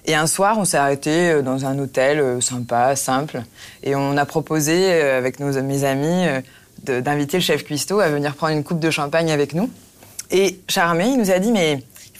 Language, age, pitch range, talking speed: French, 20-39, 145-185 Hz, 200 wpm